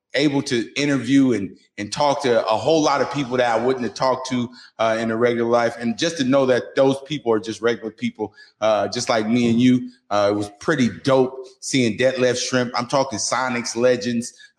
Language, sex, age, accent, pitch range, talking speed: English, male, 30-49, American, 120-150 Hz, 215 wpm